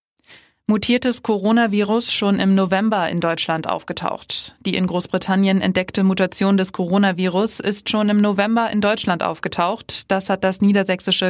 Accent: German